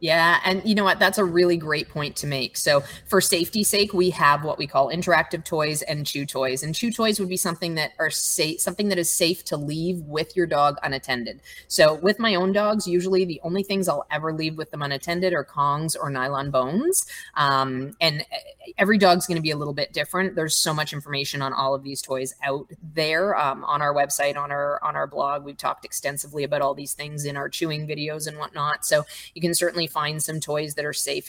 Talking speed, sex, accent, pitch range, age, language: 225 wpm, female, American, 140-170 Hz, 20-39, English